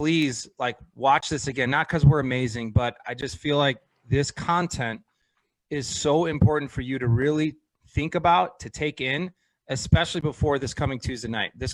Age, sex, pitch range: 30-49, male, 120-145 Hz